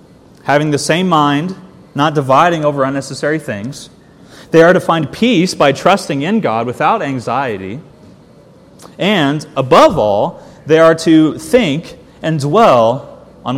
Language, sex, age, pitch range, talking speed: English, male, 30-49, 140-170 Hz, 135 wpm